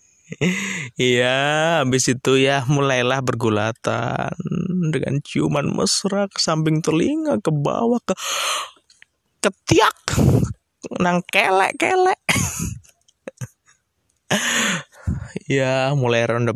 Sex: male